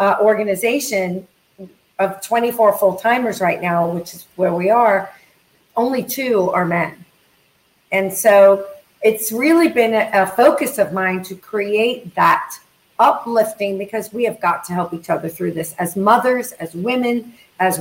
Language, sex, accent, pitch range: English, female, American, 195-270 Hz